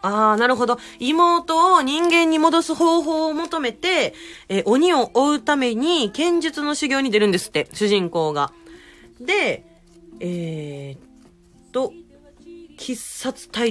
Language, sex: Japanese, female